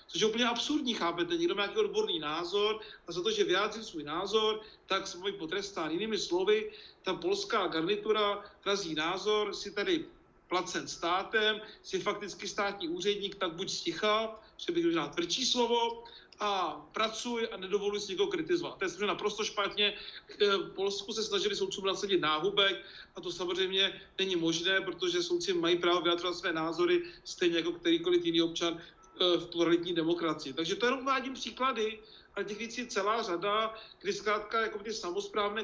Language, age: Czech, 40-59